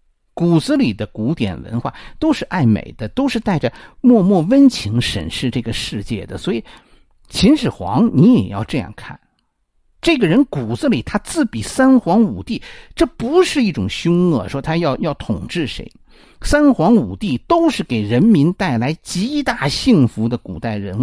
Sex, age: male, 50-69